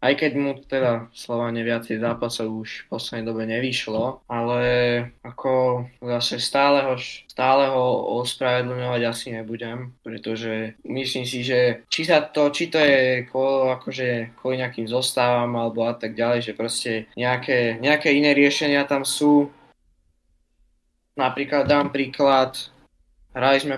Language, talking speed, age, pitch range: Slovak, 135 wpm, 20-39, 115-135 Hz